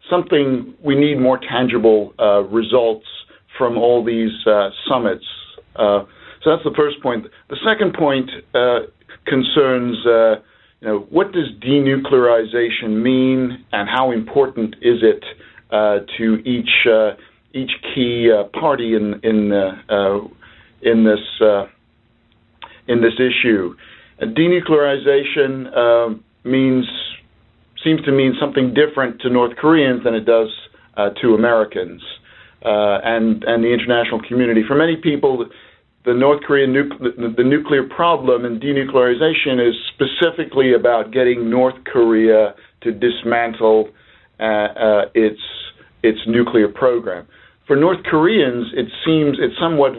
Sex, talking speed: male, 130 wpm